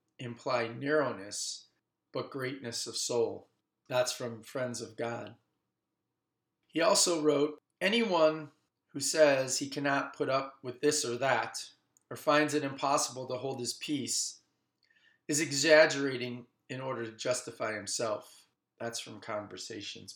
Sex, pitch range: male, 120-150 Hz